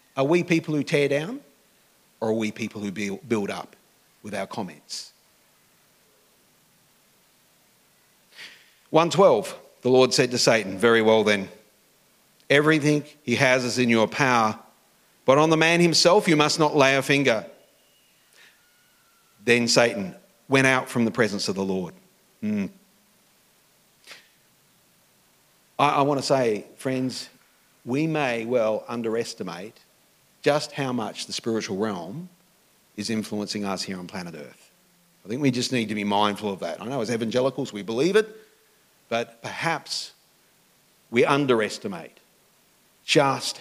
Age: 40-59